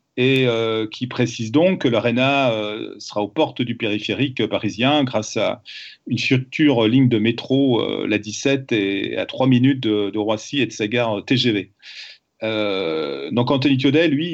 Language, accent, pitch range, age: French, French, 110-130 Hz, 40-59